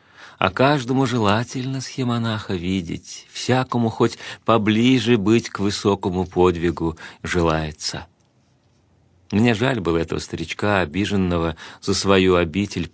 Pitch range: 90-105 Hz